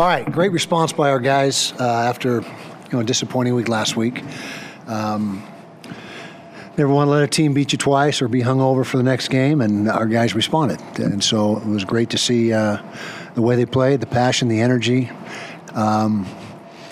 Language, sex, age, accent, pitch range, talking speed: English, male, 50-69, American, 110-125 Hz, 190 wpm